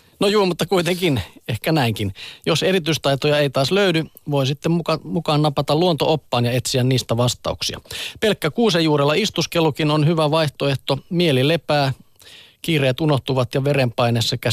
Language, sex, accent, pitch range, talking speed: Finnish, male, native, 125-155 Hz, 135 wpm